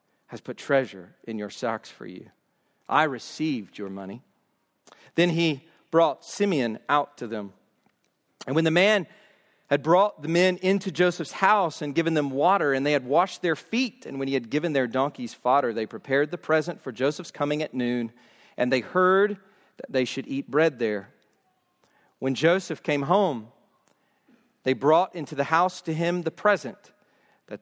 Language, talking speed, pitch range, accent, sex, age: English, 175 wpm, 135-195 Hz, American, male, 40-59